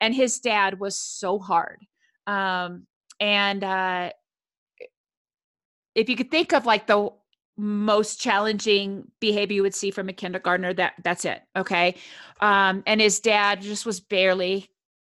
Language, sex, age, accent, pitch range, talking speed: English, female, 30-49, American, 190-230 Hz, 145 wpm